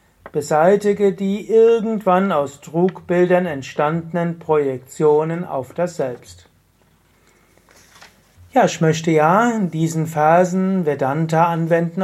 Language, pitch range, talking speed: German, 145-185 Hz, 95 wpm